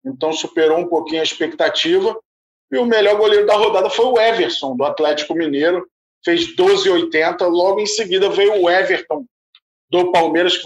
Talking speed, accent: 165 wpm, Brazilian